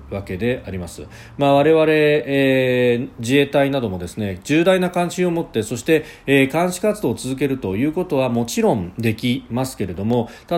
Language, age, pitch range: Japanese, 40-59, 105-140 Hz